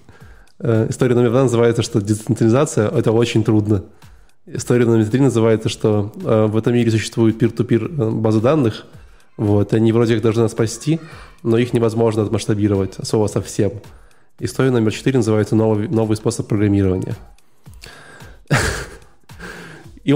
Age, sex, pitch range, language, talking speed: 20-39, male, 110-130 Hz, Russian, 135 wpm